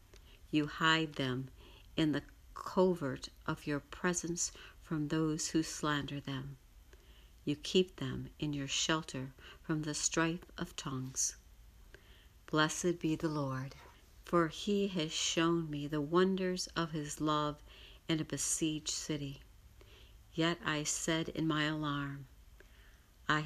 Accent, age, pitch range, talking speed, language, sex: American, 60-79, 135-160 Hz, 130 wpm, English, female